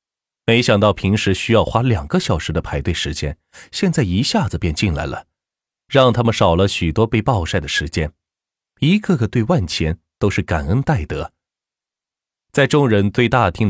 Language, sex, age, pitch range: Chinese, male, 30-49, 85-125 Hz